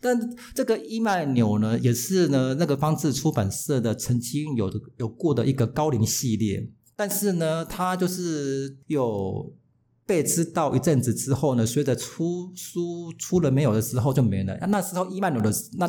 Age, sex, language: 50-69, male, Chinese